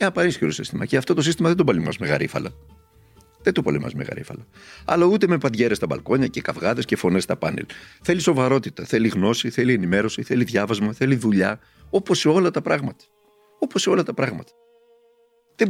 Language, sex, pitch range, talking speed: Greek, male, 100-165 Hz, 185 wpm